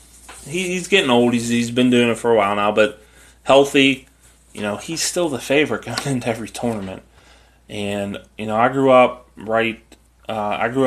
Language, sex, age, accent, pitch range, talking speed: English, male, 20-39, American, 85-120 Hz, 195 wpm